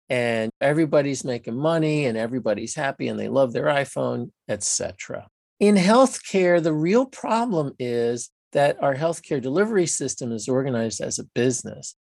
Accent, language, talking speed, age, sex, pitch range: American, English, 150 wpm, 50-69, male, 120-170 Hz